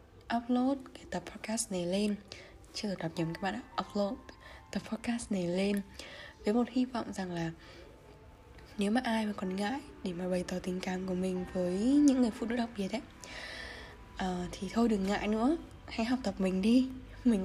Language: Vietnamese